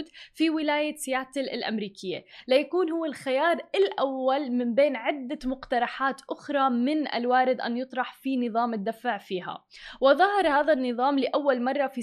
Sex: female